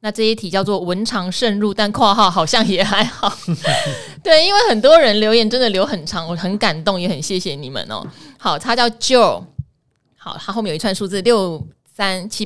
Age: 20-39